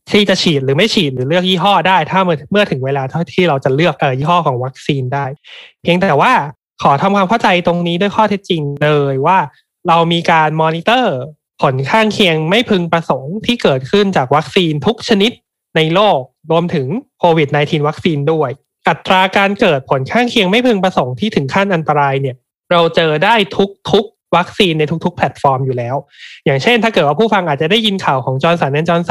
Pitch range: 150-195 Hz